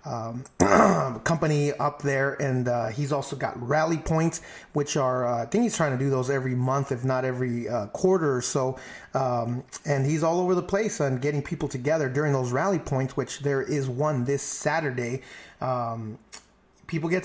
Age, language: 30-49, English